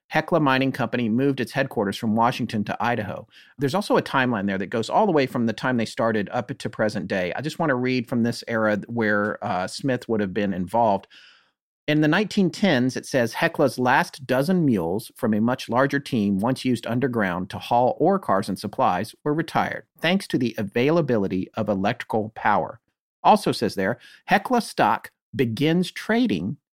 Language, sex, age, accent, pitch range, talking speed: English, male, 40-59, American, 115-165 Hz, 185 wpm